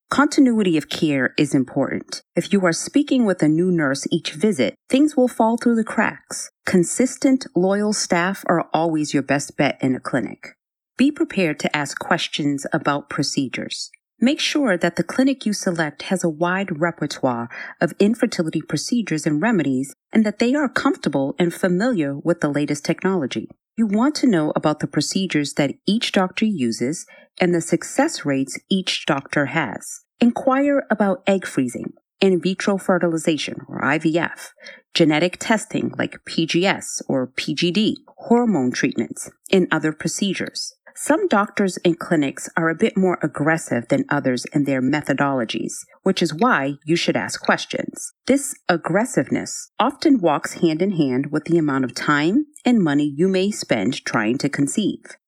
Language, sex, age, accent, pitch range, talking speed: English, female, 40-59, American, 155-235 Hz, 155 wpm